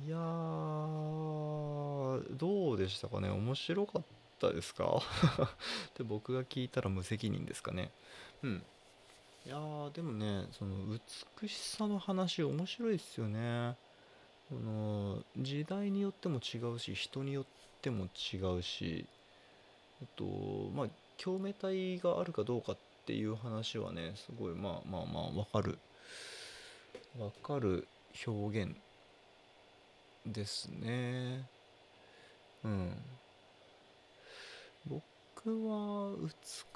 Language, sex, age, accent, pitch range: Japanese, male, 20-39, native, 105-165 Hz